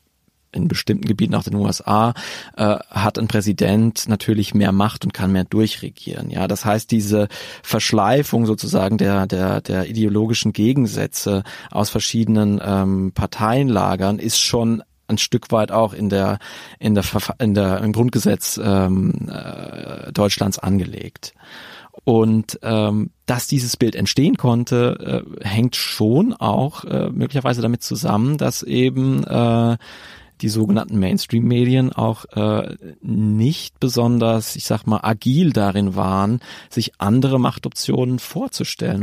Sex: male